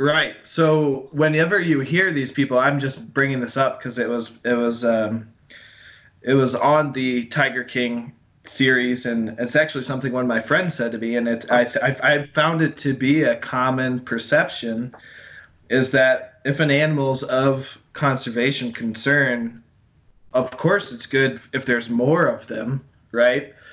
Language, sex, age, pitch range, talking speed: English, male, 20-39, 120-145 Hz, 160 wpm